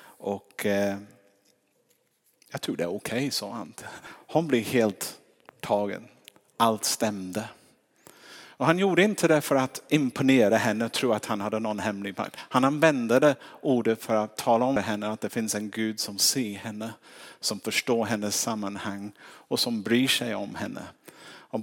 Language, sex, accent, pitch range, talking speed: Swedish, male, Norwegian, 110-135 Hz, 165 wpm